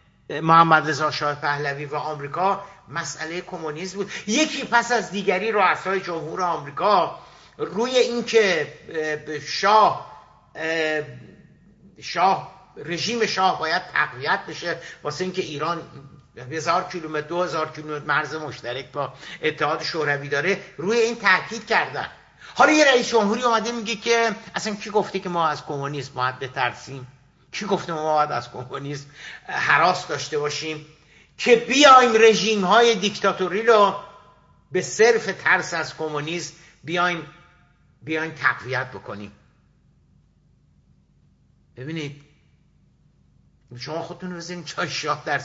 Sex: male